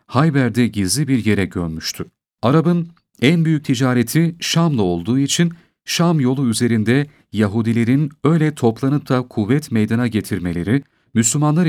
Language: Turkish